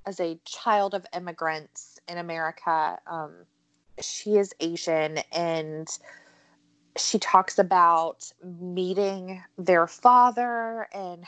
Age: 20-39